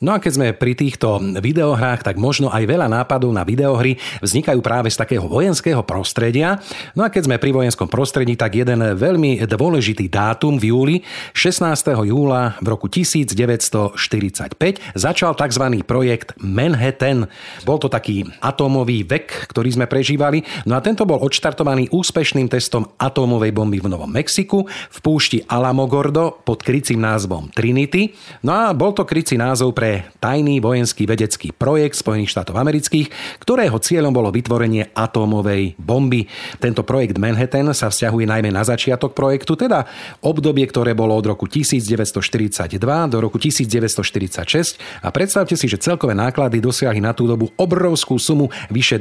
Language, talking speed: Slovak, 150 wpm